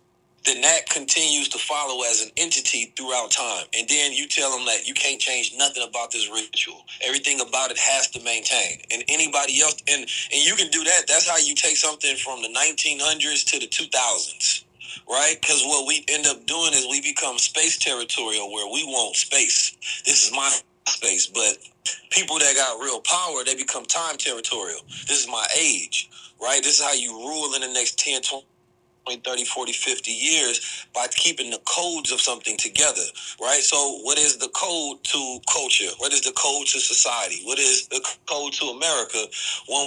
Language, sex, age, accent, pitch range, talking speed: English, male, 30-49, American, 125-155 Hz, 190 wpm